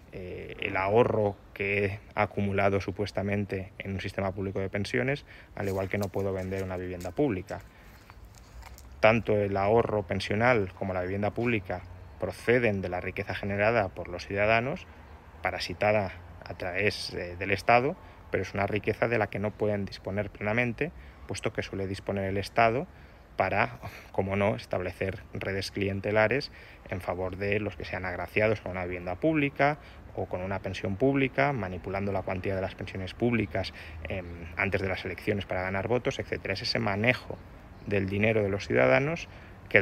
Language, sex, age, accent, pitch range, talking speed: Spanish, male, 30-49, Spanish, 95-105 Hz, 165 wpm